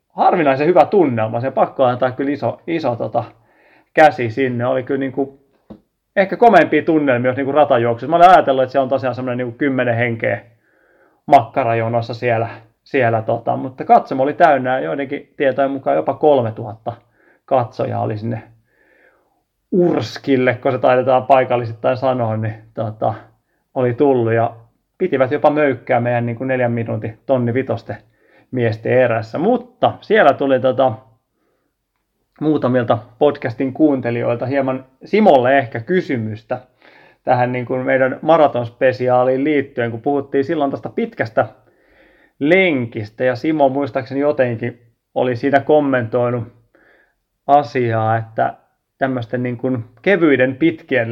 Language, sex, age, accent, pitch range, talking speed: Finnish, male, 30-49, native, 120-140 Hz, 125 wpm